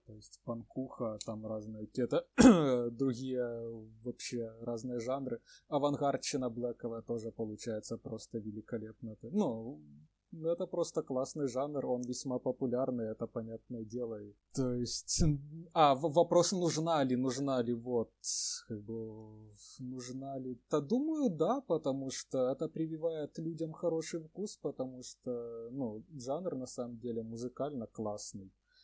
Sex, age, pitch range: male, 20-39, 115-135 Hz